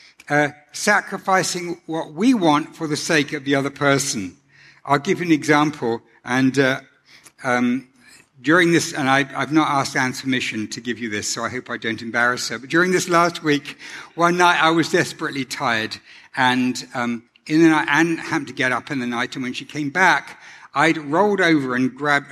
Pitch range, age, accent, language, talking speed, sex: 135-170 Hz, 60-79, British, English, 200 wpm, male